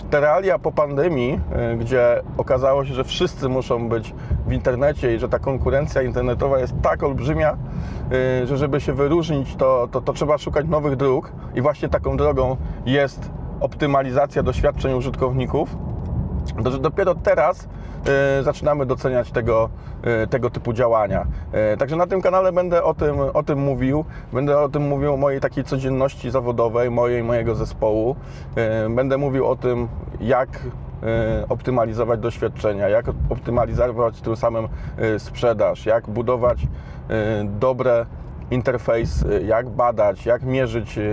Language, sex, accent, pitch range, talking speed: Polish, male, native, 115-135 Hz, 140 wpm